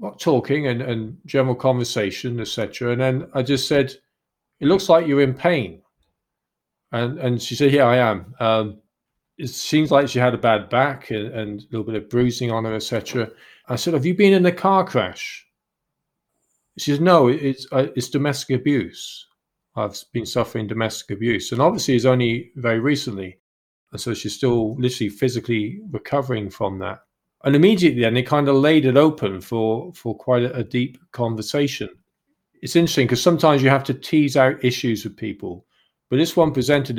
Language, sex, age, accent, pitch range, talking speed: English, male, 40-59, British, 115-140 Hz, 185 wpm